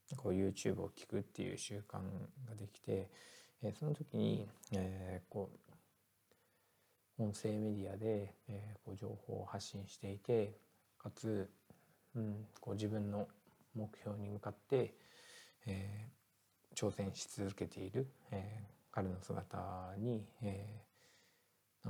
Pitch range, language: 100-115 Hz, Japanese